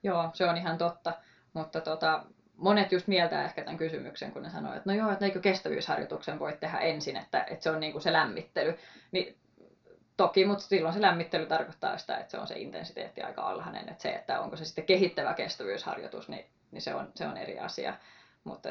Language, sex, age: Finnish, female, 20-39